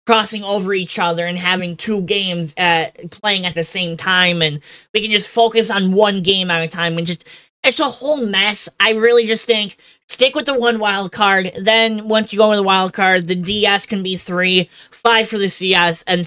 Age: 20-39